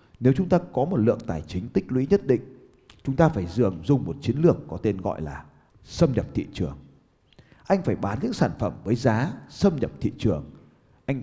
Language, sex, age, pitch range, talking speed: Vietnamese, male, 30-49, 95-140 Hz, 220 wpm